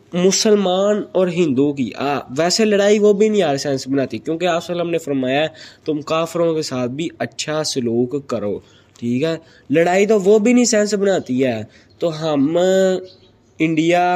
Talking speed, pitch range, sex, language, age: 160 wpm, 130-175 Hz, male, Urdu, 20-39